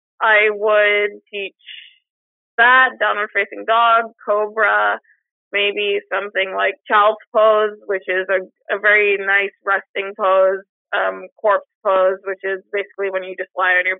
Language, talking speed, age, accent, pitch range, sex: English, 135 wpm, 20-39, American, 190-235 Hz, female